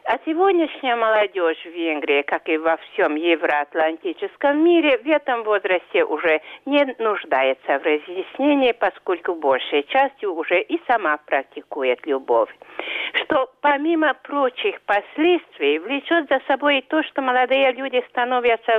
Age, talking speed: 50-69, 130 wpm